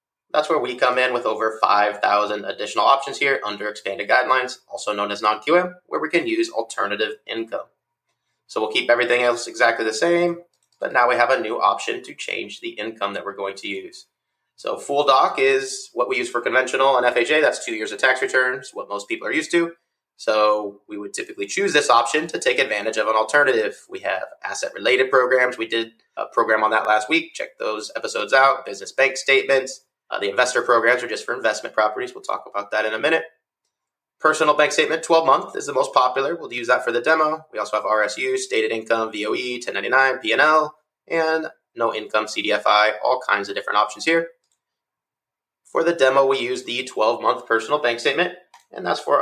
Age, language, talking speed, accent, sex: 20-39, English, 200 wpm, American, male